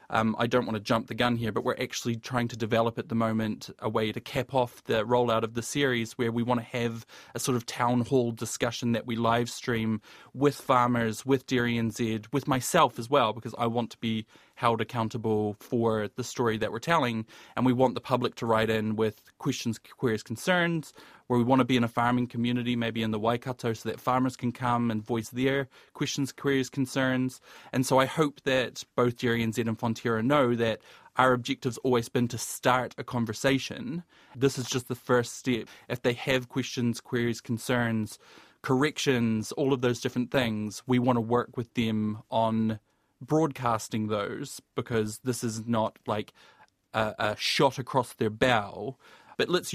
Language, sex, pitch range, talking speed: English, male, 115-130 Hz, 195 wpm